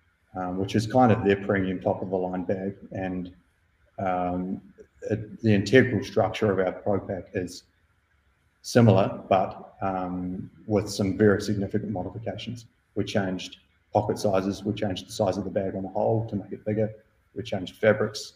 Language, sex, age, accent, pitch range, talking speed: English, male, 30-49, Australian, 90-105 Hz, 165 wpm